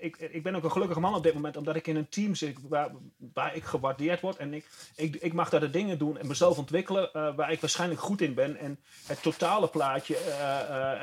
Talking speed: 245 wpm